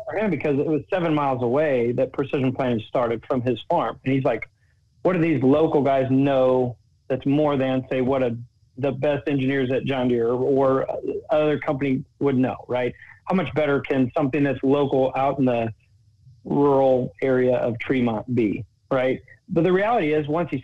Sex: male